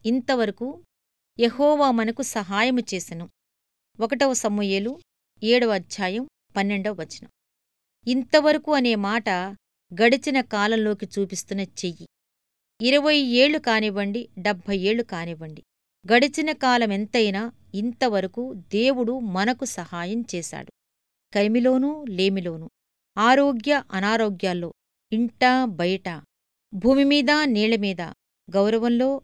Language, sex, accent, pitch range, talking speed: Telugu, female, native, 190-250 Hz, 75 wpm